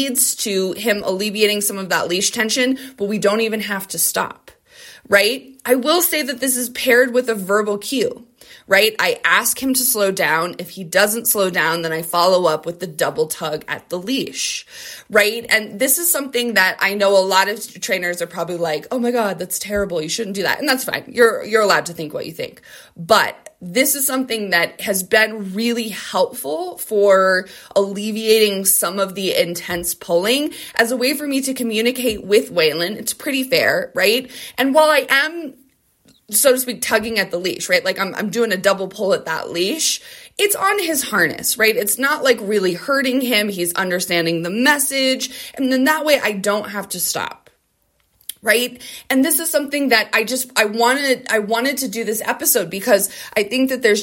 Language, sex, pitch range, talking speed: English, female, 195-260 Hz, 200 wpm